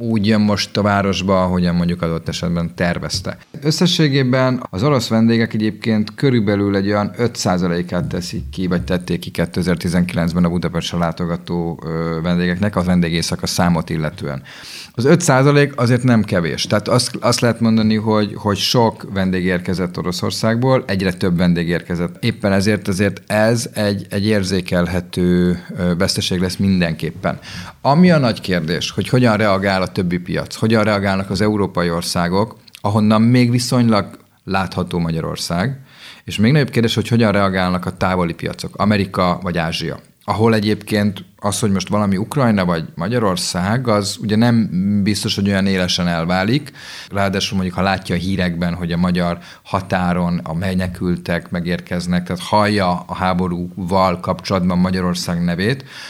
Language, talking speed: Hungarian, 140 wpm